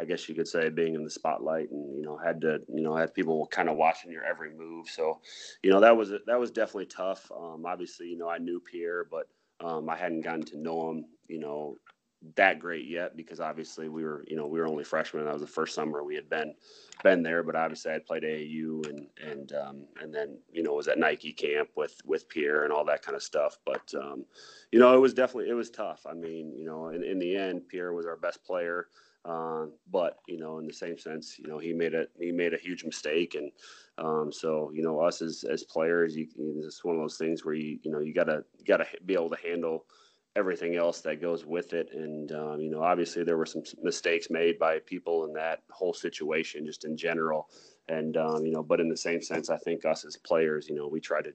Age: 30-49